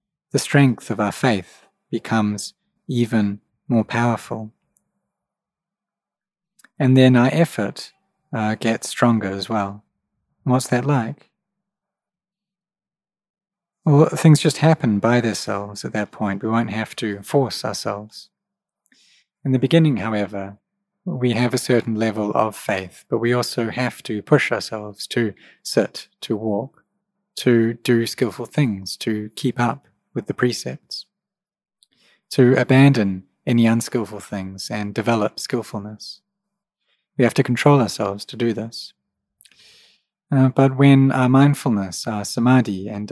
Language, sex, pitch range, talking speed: English, male, 105-140 Hz, 130 wpm